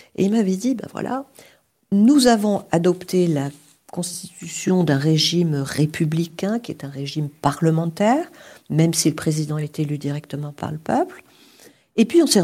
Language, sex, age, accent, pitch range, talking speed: French, female, 50-69, French, 160-205 Hz, 160 wpm